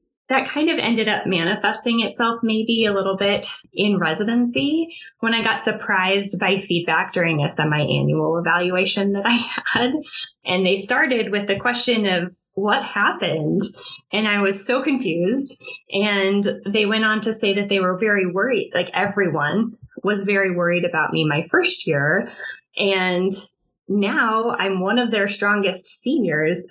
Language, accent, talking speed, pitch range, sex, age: English, American, 155 wpm, 180-230 Hz, female, 20-39